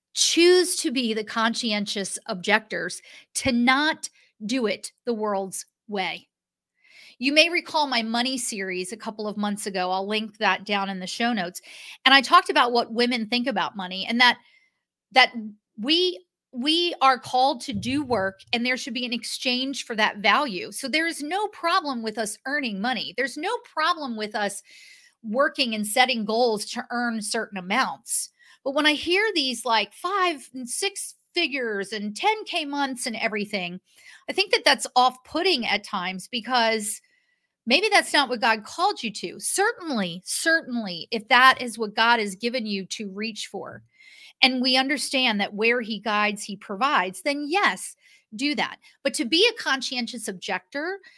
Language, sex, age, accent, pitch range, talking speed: English, female, 40-59, American, 215-305 Hz, 170 wpm